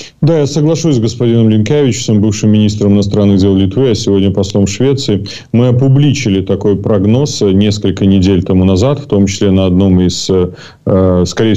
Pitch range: 95-115 Hz